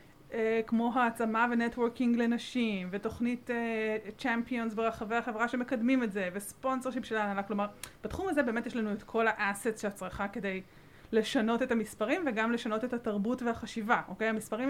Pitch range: 210-250 Hz